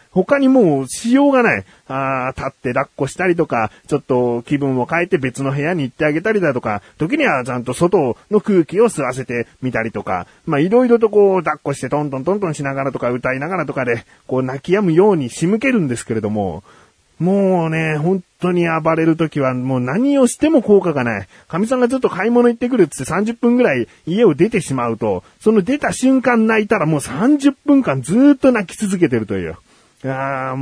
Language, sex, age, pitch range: Japanese, male, 40-59, 130-200 Hz